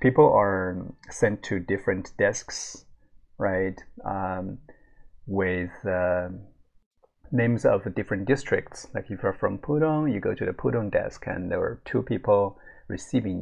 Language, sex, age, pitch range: Chinese, male, 30-49, 95-125 Hz